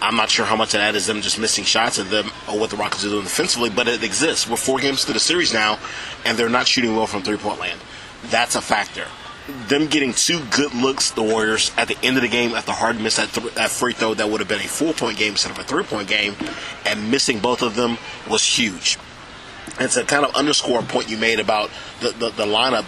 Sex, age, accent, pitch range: male, 30-49, American, 110-130 Hz